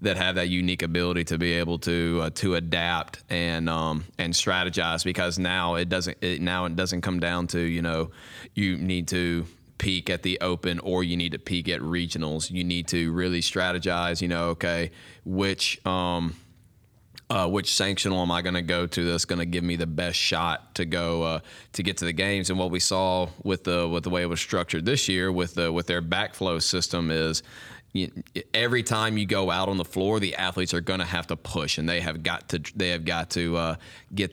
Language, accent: English, American